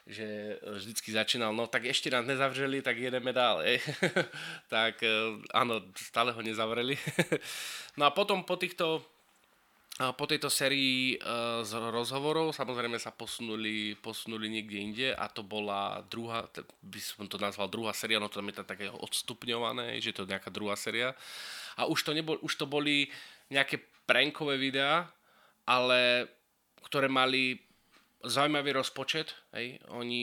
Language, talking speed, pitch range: Slovak, 145 wpm, 105-125 Hz